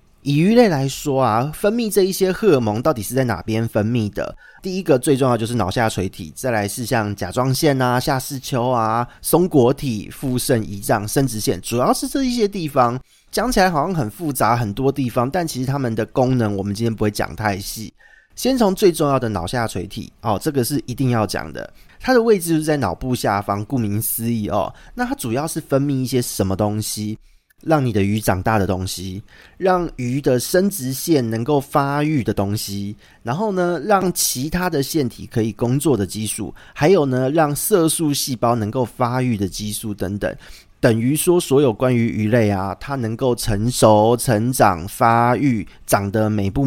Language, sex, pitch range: Chinese, male, 105-145 Hz